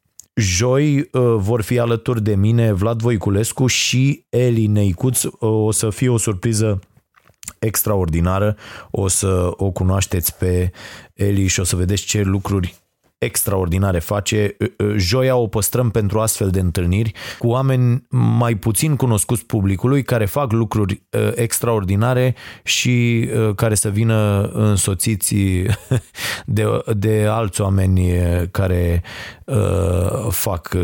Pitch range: 95-125 Hz